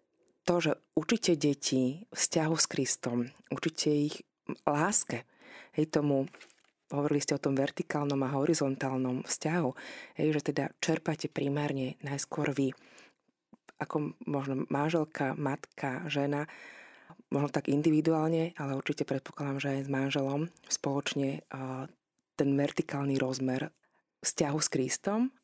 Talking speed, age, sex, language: 115 wpm, 20-39, female, Slovak